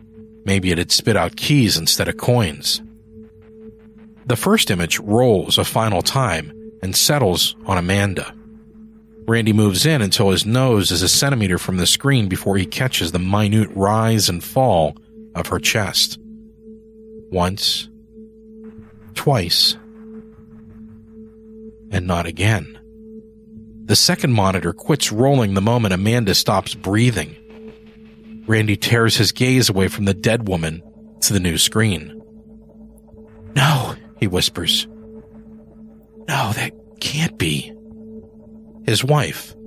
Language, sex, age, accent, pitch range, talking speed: English, male, 40-59, American, 100-150 Hz, 120 wpm